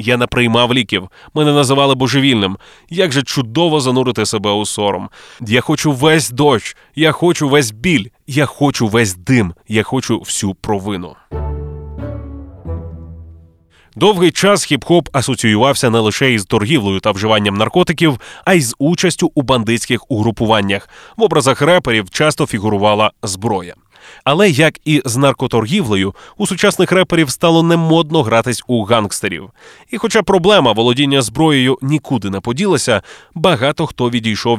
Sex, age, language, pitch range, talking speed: male, 20-39, Ukrainian, 110-160 Hz, 135 wpm